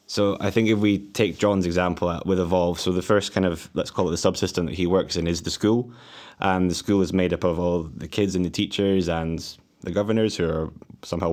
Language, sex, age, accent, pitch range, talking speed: English, male, 20-39, British, 85-95 Hz, 250 wpm